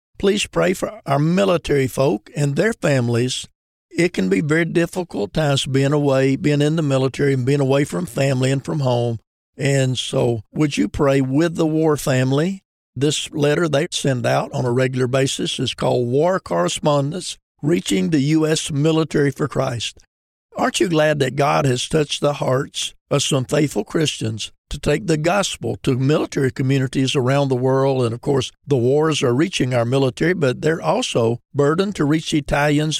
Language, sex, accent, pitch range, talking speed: English, male, American, 130-160 Hz, 175 wpm